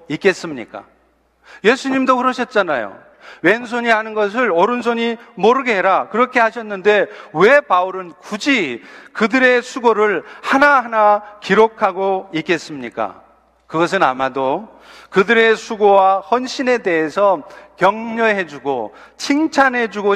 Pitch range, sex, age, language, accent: 180-235 Hz, male, 40-59, Korean, native